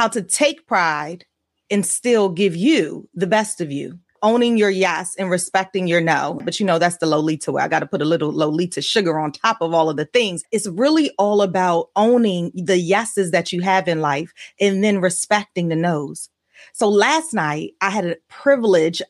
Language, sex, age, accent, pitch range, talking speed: English, female, 30-49, American, 180-230 Hz, 205 wpm